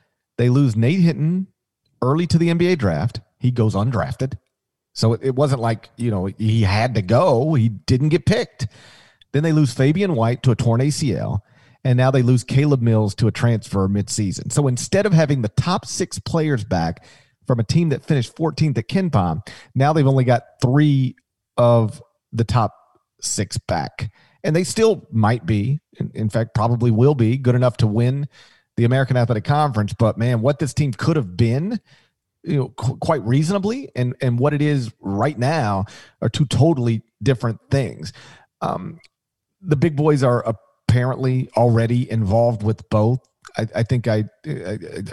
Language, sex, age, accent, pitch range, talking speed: English, male, 40-59, American, 110-145 Hz, 175 wpm